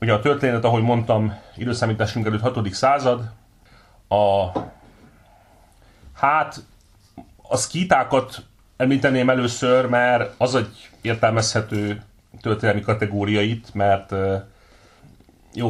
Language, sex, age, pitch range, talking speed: Hungarian, male, 30-49, 100-115 Hz, 90 wpm